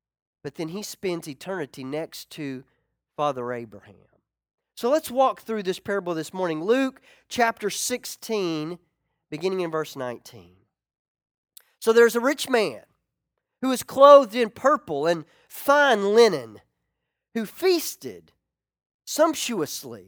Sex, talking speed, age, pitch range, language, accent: male, 120 wpm, 40-59, 155-250 Hz, English, American